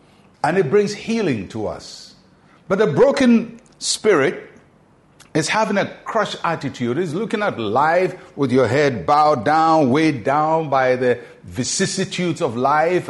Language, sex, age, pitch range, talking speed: English, male, 60-79, 130-170 Hz, 140 wpm